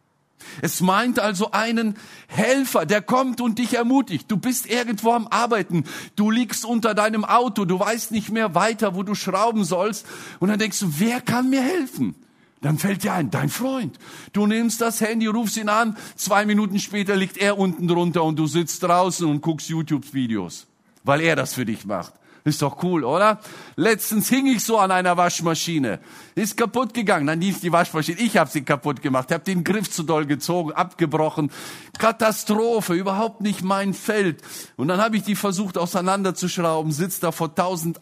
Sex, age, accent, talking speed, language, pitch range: male, 50-69, German, 185 wpm, German, 165-220 Hz